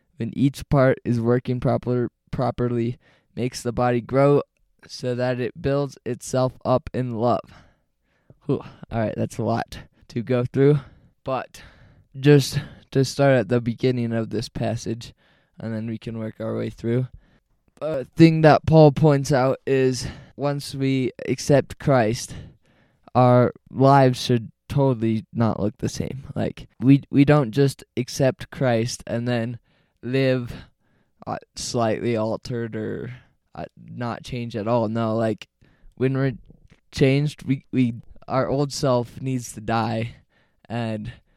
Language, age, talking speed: English, 20-39, 140 wpm